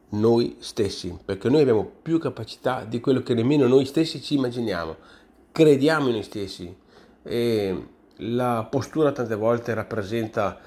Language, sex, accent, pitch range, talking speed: Italian, male, native, 100-125 Hz, 140 wpm